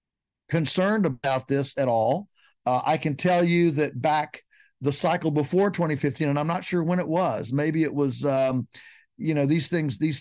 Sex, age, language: male, 50-69, English